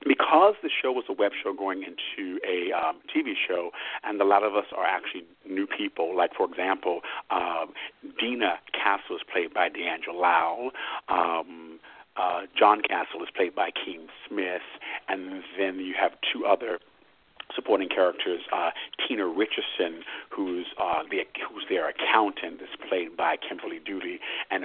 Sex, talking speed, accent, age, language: male, 160 wpm, American, 50-69, English